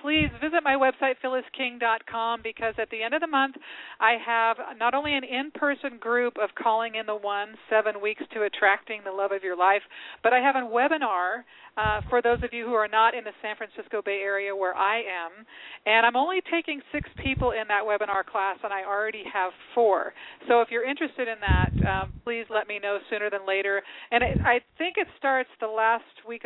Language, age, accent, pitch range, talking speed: English, 40-59, American, 200-245 Hz, 210 wpm